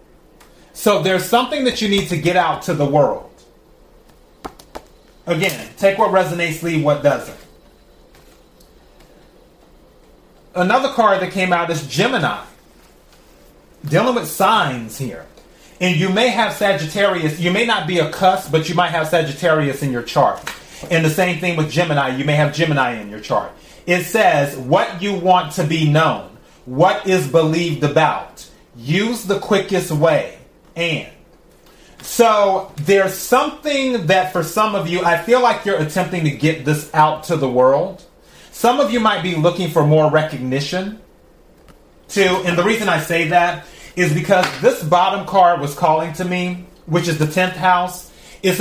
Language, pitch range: English, 155-190 Hz